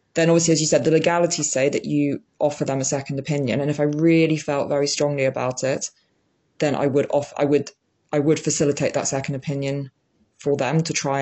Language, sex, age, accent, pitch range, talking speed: English, female, 20-39, British, 140-165 Hz, 215 wpm